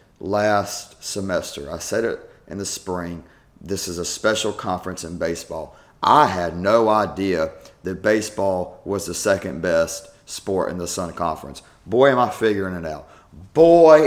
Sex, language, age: male, English, 40-59